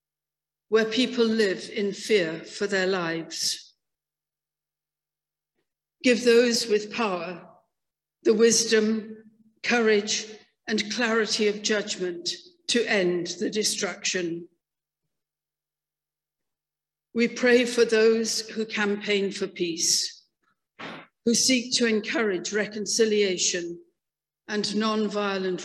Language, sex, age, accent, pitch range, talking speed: English, female, 60-79, British, 180-225 Hz, 90 wpm